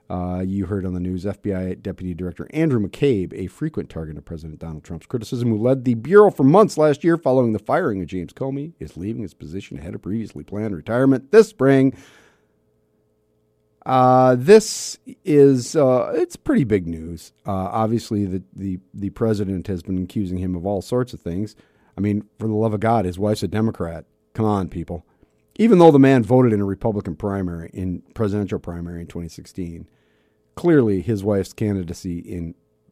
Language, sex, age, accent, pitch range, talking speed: English, male, 40-59, American, 85-115 Hz, 180 wpm